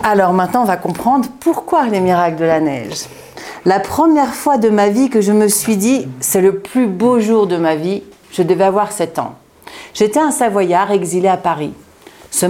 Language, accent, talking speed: French, French, 210 wpm